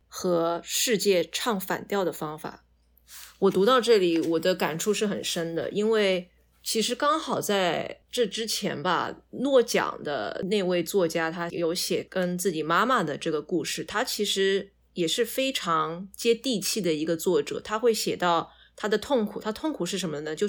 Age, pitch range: 20-39, 170-220 Hz